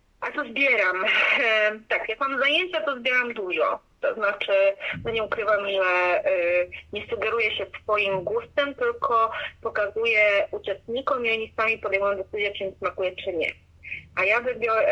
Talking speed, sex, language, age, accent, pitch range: 140 wpm, female, Polish, 30-49, native, 185-230 Hz